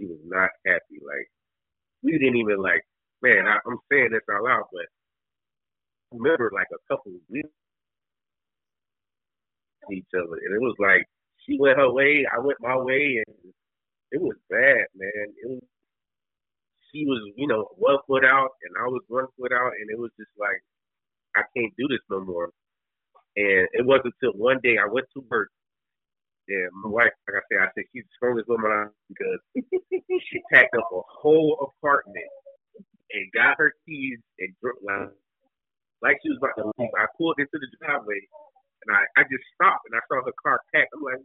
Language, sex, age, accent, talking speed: English, male, 30-49, American, 185 wpm